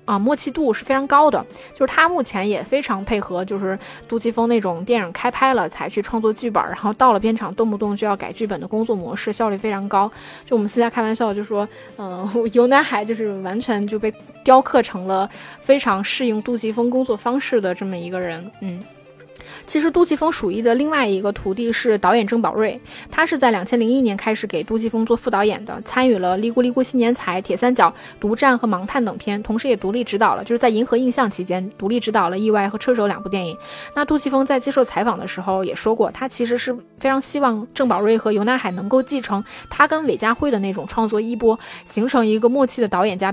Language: Chinese